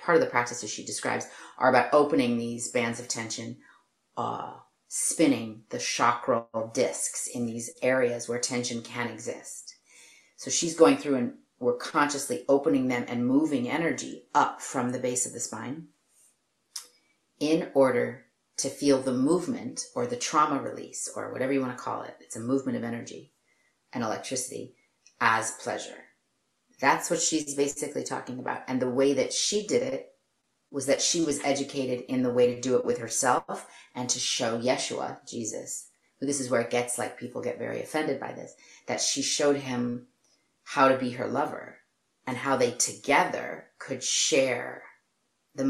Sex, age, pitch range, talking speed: female, 40-59, 120-145 Hz, 170 wpm